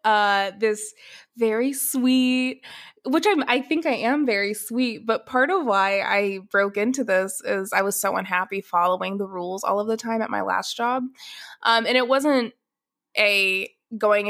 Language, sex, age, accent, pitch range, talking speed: English, female, 20-39, American, 195-245 Hz, 175 wpm